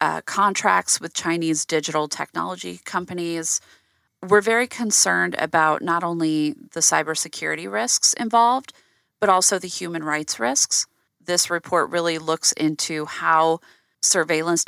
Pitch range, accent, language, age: 155-190 Hz, American, English, 30-49